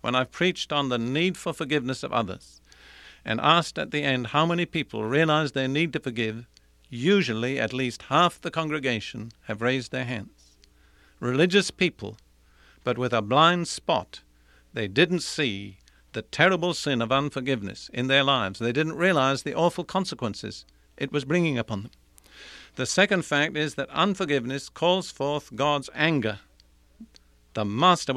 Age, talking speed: 50-69, 160 wpm